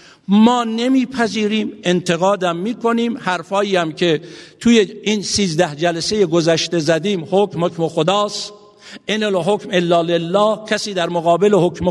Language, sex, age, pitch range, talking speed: Persian, male, 60-79, 165-215 Hz, 125 wpm